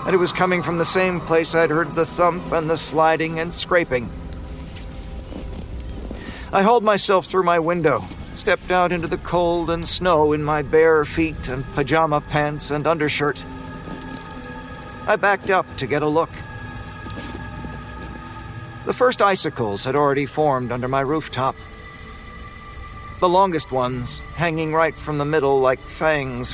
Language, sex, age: English, male, 50-69